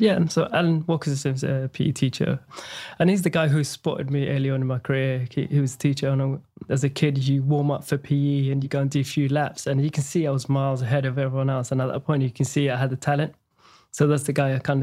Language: English